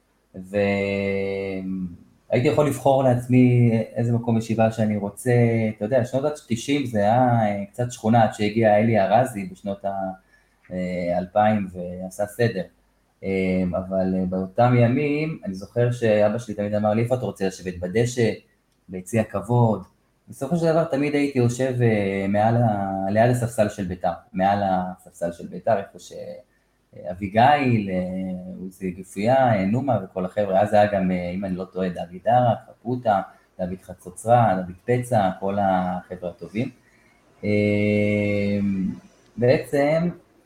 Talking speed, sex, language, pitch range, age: 120 wpm, male, Hebrew, 95-120 Hz, 20-39